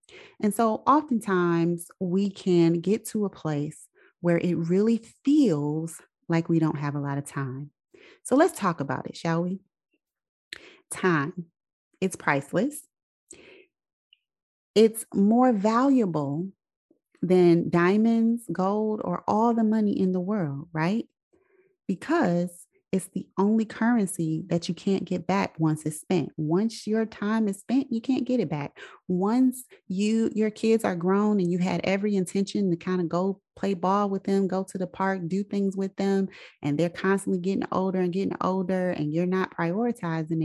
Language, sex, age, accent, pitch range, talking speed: English, female, 30-49, American, 175-230 Hz, 160 wpm